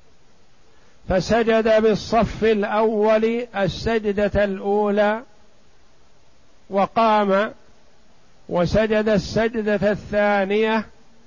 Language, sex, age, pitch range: Arabic, male, 60-79, 195-220 Hz